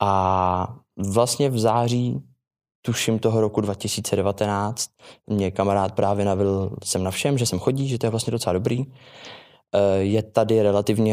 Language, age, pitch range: Czech, 20-39, 100-115 Hz